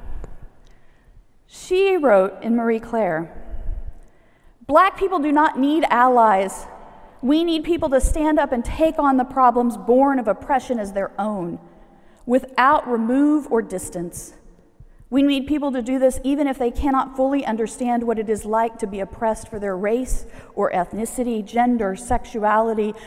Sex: female